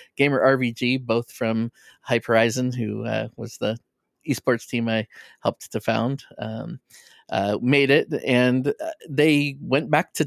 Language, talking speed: English, 140 wpm